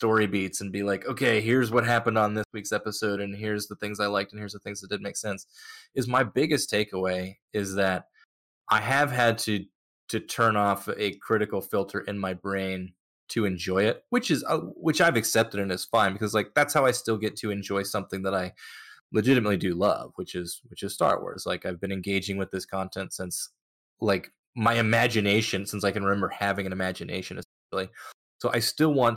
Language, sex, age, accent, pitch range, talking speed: English, male, 20-39, American, 95-115 Hz, 210 wpm